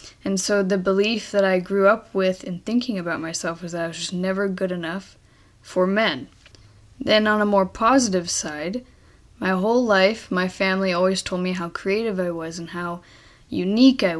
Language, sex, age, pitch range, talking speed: English, female, 10-29, 175-205 Hz, 190 wpm